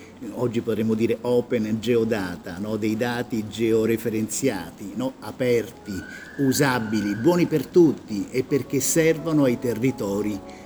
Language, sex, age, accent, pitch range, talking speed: Italian, male, 50-69, native, 110-140 Hz, 115 wpm